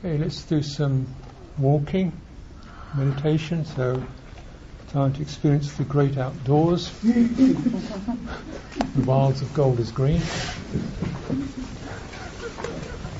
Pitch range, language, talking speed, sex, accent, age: 140-185 Hz, English, 85 wpm, male, American, 60-79